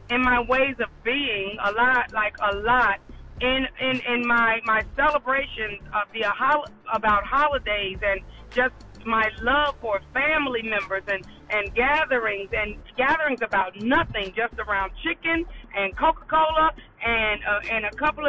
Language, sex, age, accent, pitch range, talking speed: English, female, 40-59, American, 220-290 Hz, 150 wpm